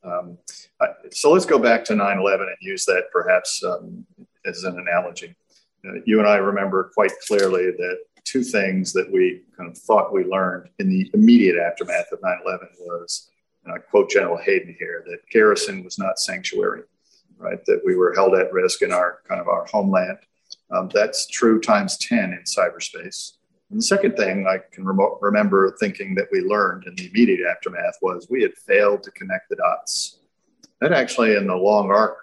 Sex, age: male, 50-69